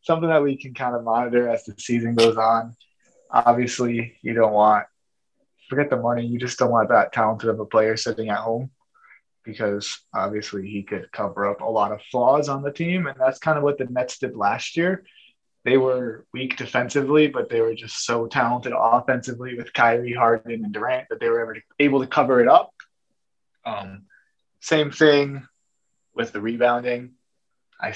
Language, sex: English, male